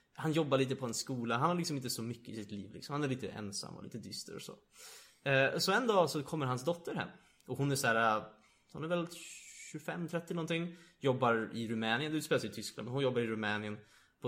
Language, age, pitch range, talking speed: Swedish, 20-39, 110-145 Hz, 240 wpm